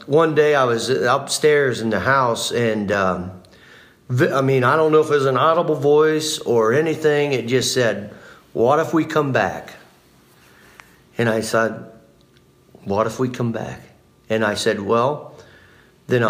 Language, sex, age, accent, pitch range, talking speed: English, male, 50-69, American, 115-145 Hz, 160 wpm